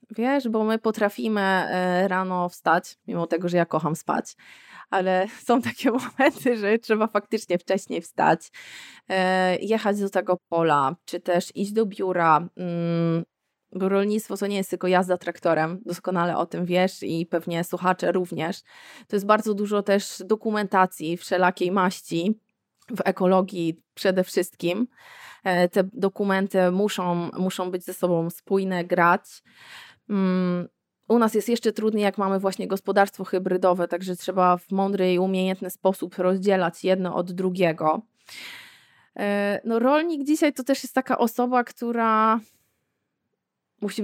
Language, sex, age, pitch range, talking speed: Polish, female, 20-39, 180-225 Hz, 130 wpm